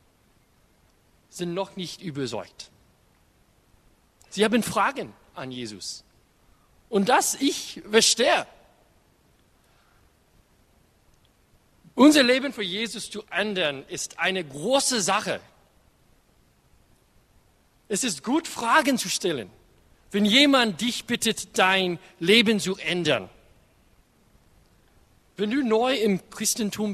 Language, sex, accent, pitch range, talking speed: German, male, German, 155-220 Hz, 95 wpm